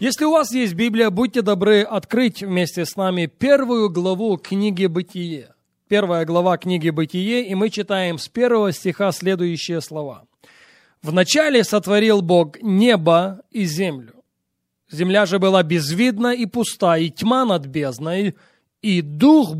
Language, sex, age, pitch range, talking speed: Russian, male, 20-39, 170-230 Hz, 140 wpm